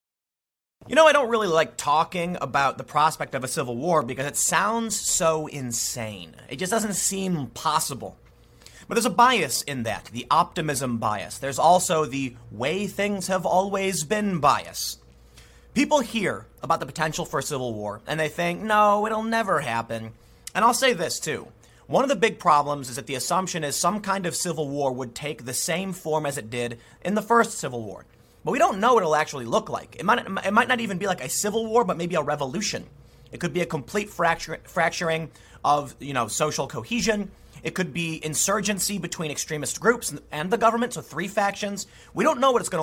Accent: American